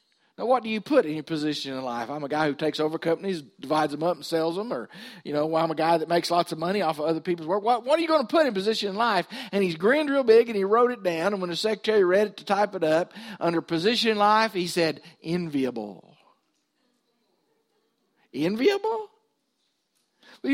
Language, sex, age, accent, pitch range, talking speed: English, male, 50-69, American, 170-250 Hz, 230 wpm